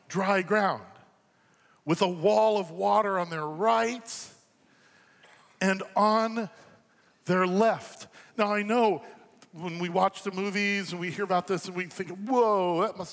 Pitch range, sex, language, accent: 170-220 Hz, male, English, American